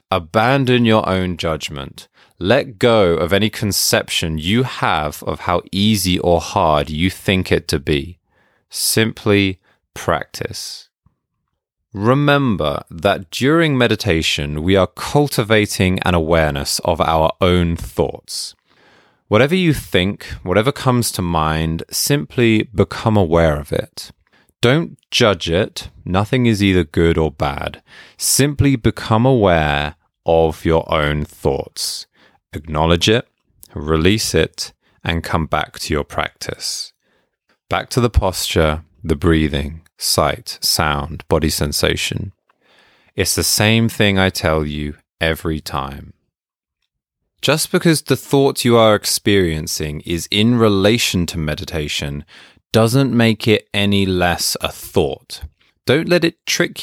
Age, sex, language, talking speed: 30-49, male, English, 120 wpm